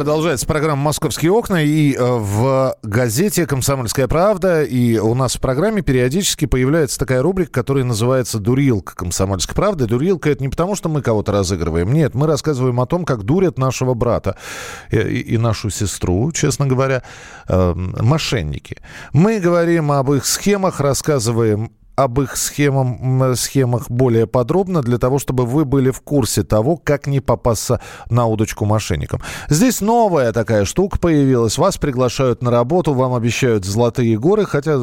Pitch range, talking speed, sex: 110-150 Hz, 155 wpm, male